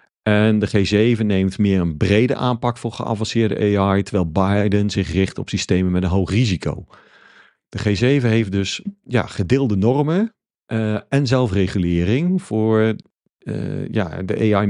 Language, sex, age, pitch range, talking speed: Dutch, male, 50-69, 95-110 Hz, 145 wpm